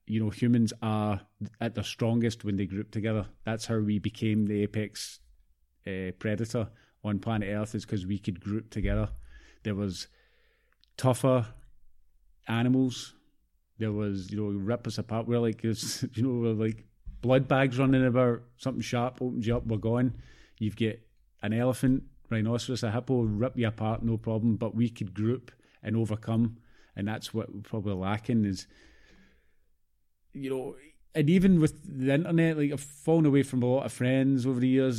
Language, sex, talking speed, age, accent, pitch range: English, male, 170 wpm, 30-49, British, 110-130 Hz